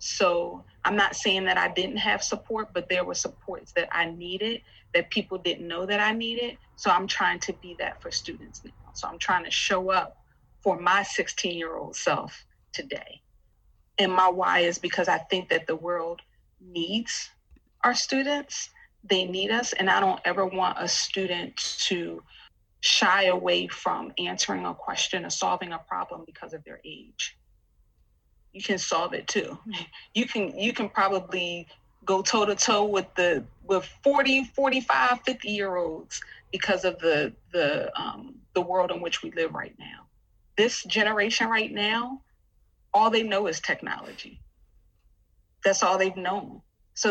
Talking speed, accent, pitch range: 170 wpm, American, 180-220 Hz